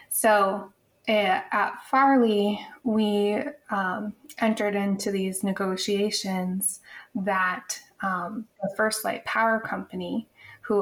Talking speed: 100 wpm